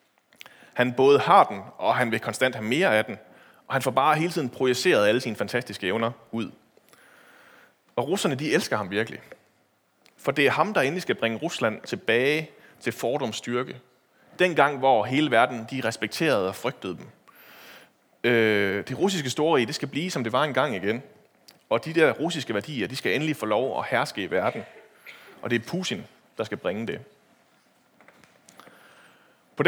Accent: native